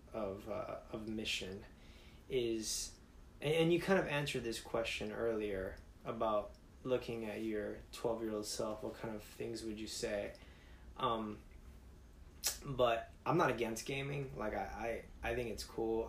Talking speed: 155 wpm